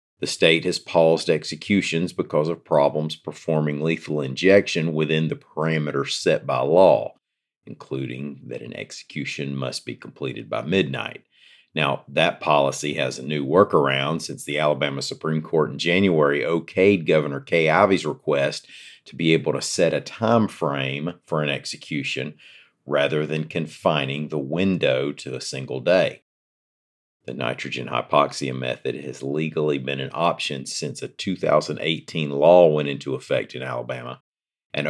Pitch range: 70-85 Hz